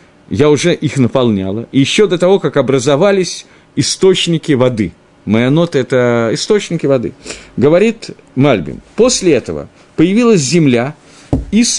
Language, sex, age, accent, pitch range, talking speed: Russian, male, 50-69, native, 130-180 Hz, 130 wpm